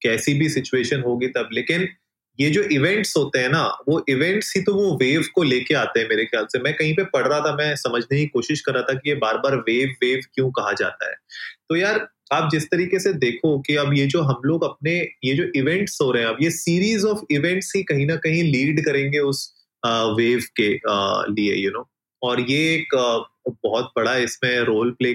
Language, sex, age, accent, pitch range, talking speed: Hindi, male, 30-49, native, 125-160 Hz, 225 wpm